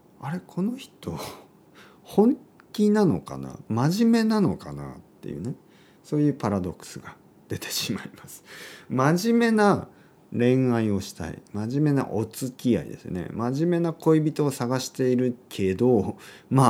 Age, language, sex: 40-59, Japanese, male